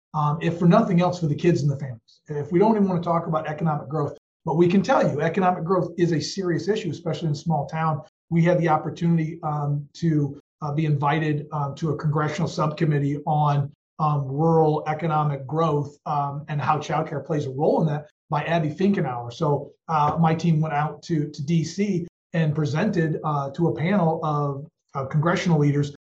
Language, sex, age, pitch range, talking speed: English, male, 40-59, 150-180 Hz, 195 wpm